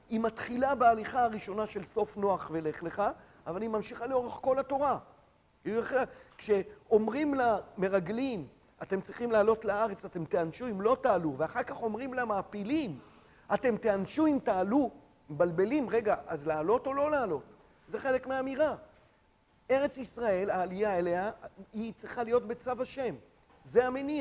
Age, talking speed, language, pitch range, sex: 50-69, 135 wpm, Hebrew, 175-245 Hz, male